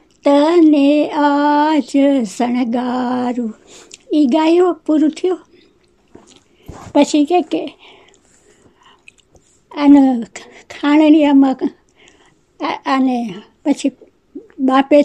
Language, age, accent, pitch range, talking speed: Gujarati, 60-79, American, 260-310 Hz, 55 wpm